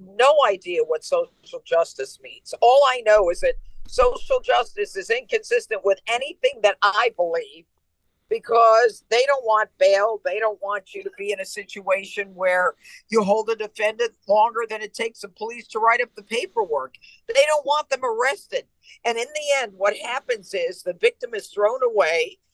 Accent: American